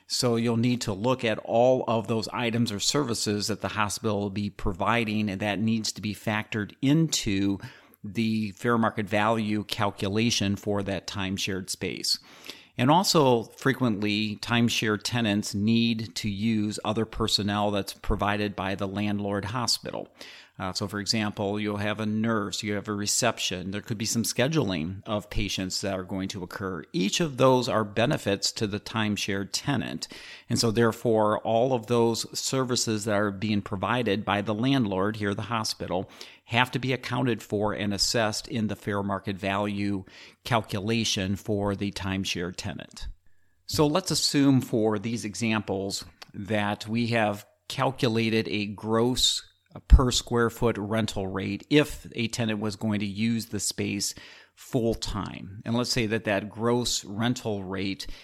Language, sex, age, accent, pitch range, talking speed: English, male, 40-59, American, 100-115 Hz, 155 wpm